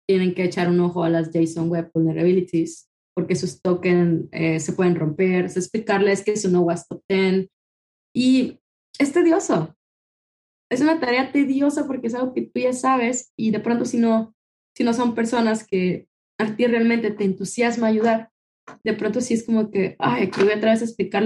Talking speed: 190 wpm